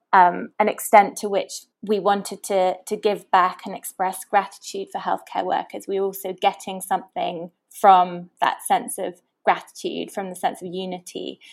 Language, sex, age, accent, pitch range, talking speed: English, female, 20-39, British, 185-225 Hz, 165 wpm